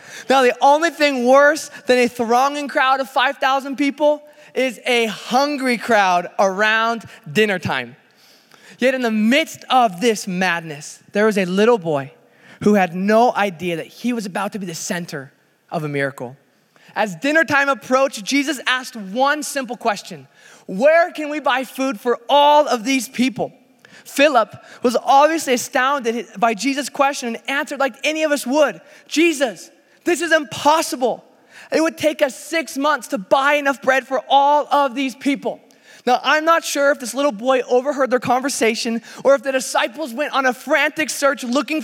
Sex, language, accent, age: male, English, American, 20-39